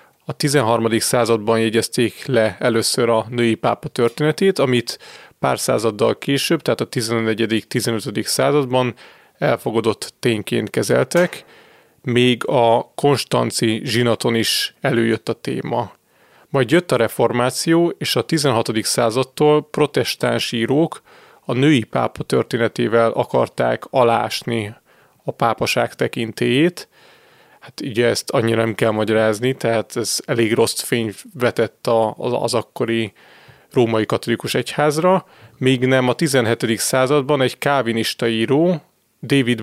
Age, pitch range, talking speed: 30-49, 115-145 Hz, 115 wpm